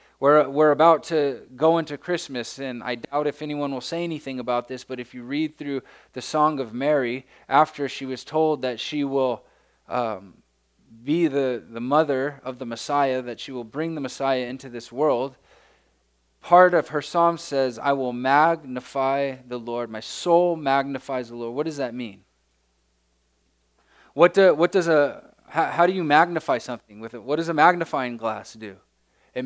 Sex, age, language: male, 20-39, English